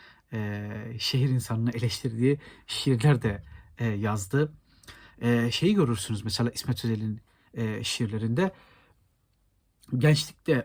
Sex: male